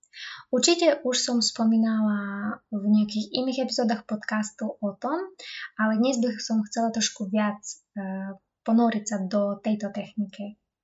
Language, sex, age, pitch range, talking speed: Slovak, female, 20-39, 210-255 Hz, 125 wpm